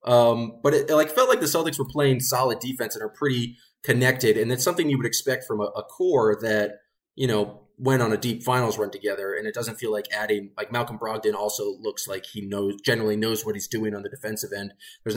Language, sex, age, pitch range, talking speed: English, male, 20-39, 105-130 Hz, 240 wpm